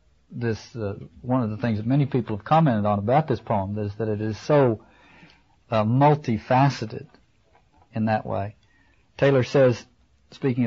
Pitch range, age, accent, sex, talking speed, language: 110-140 Hz, 50-69, American, male, 155 wpm, English